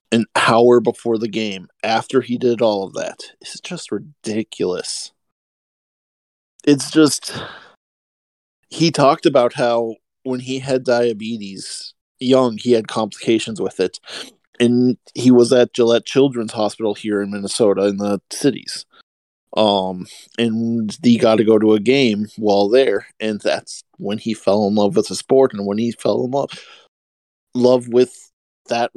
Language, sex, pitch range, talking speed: English, male, 105-130 Hz, 150 wpm